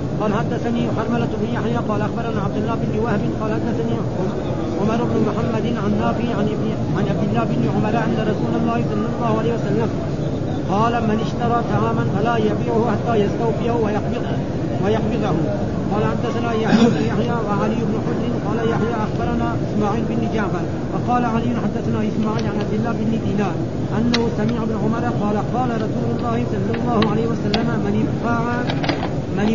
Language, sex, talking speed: Arabic, male, 155 wpm